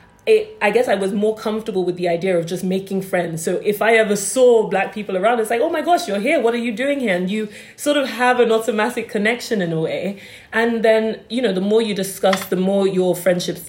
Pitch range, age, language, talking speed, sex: 165-200 Hz, 20-39, English, 245 wpm, female